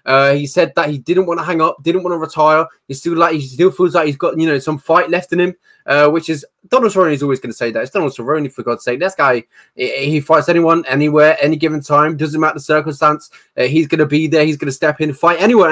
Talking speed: 285 wpm